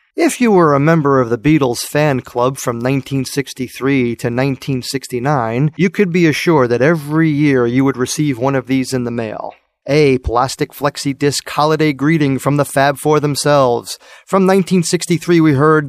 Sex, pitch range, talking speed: male, 130-155 Hz, 165 wpm